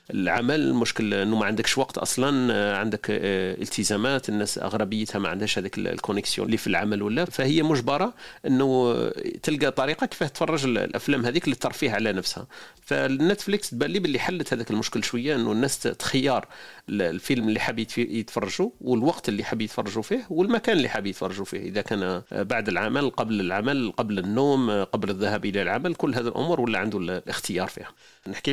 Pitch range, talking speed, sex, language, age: 105-130 Hz, 160 wpm, male, Arabic, 40-59